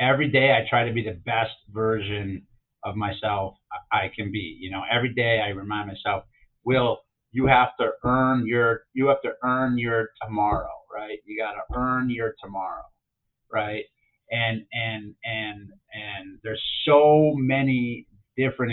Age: 30-49